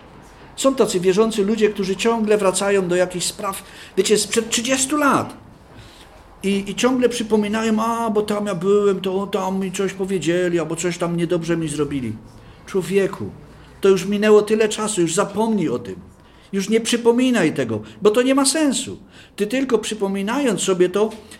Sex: male